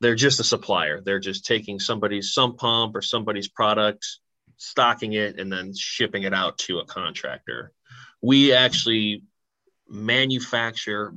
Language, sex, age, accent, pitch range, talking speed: English, male, 20-39, American, 100-115 Hz, 140 wpm